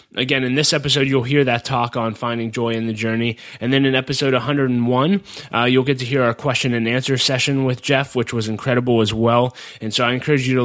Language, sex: English, male